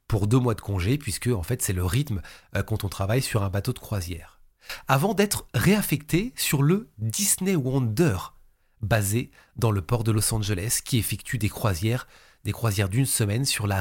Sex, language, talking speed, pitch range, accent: male, French, 185 wpm, 105-140 Hz, French